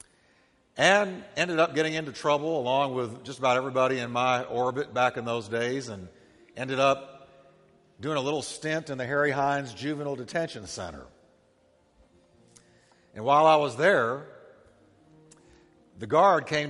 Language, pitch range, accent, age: English, 115-155 Hz, American, 50-69